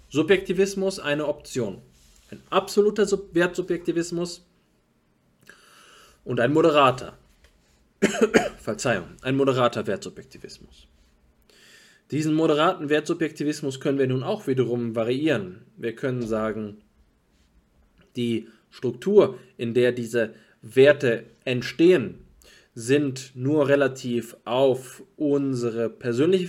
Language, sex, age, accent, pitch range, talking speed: German, male, 20-39, German, 120-155 Hz, 90 wpm